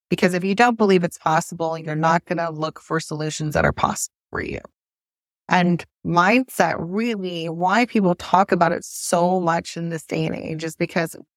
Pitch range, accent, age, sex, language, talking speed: 160-200 Hz, American, 30-49, female, English, 185 wpm